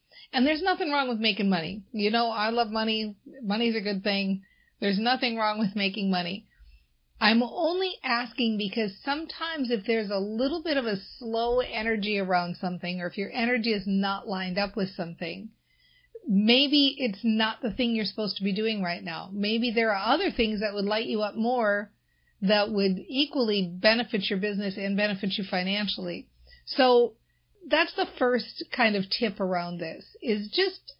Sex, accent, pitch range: female, American, 200-250 Hz